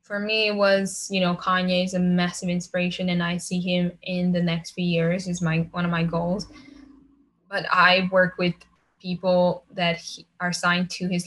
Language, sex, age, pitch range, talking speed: English, female, 10-29, 175-185 Hz, 195 wpm